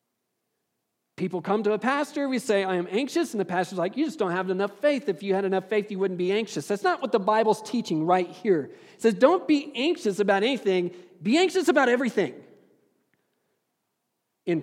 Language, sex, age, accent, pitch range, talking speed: English, male, 40-59, American, 195-245 Hz, 200 wpm